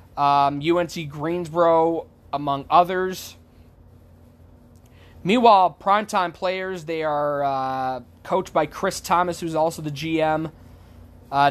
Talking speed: 105 wpm